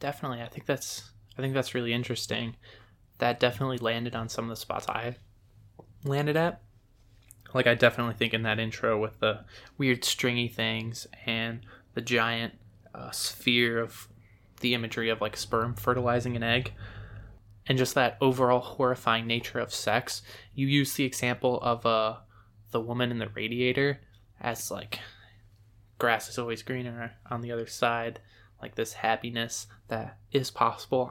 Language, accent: English, American